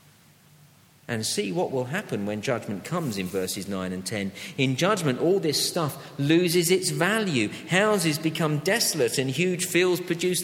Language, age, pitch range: English, 50-69, 120-170 Hz